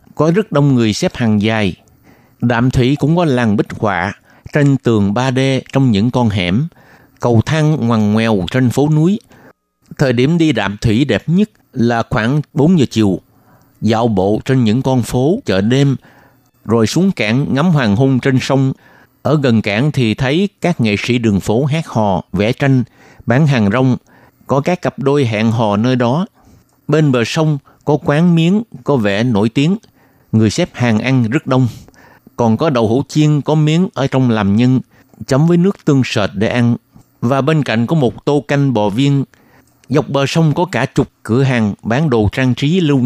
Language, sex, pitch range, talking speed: Vietnamese, male, 115-145 Hz, 190 wpm